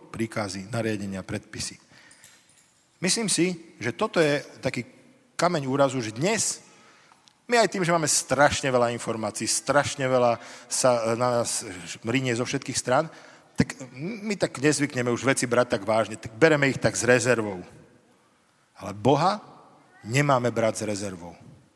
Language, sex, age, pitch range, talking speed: Slovak, male, 40-59, 115-160 Hz, 140 wpm